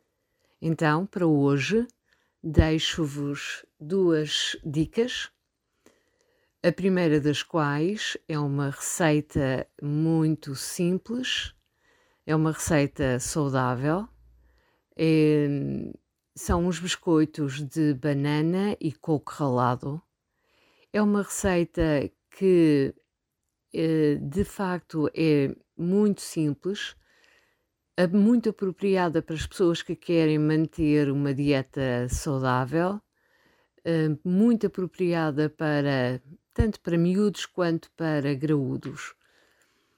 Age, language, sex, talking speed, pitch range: 50-69, Portuguese, female, 85 wpm, 145-195 Hz